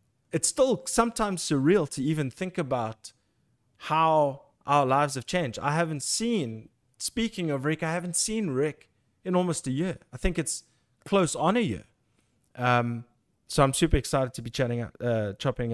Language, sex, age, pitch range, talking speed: English, male, 20-39, 120-150 Hz, 170 wpm